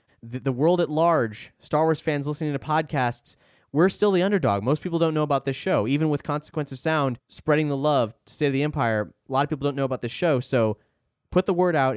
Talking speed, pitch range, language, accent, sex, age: 240 wpm, 130-185 Hz, English, American, male, 20-39